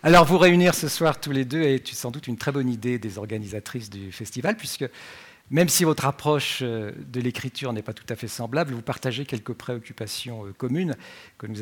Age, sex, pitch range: 50-69, male, 110-145 Hz